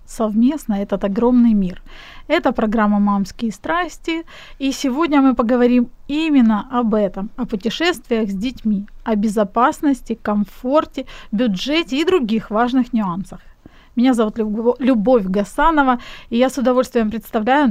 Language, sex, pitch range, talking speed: Ukrainian, female, 220-270 Hz, 120 wpm